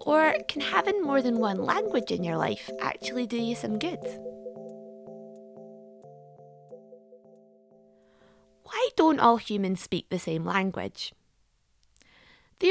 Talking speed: 115 wpm